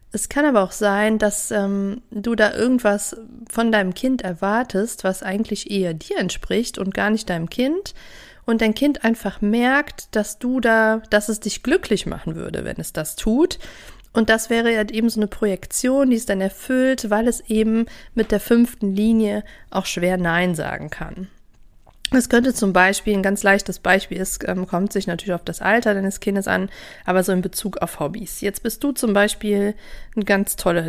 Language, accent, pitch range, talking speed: German, German, 195-230 Hz, 190 wpm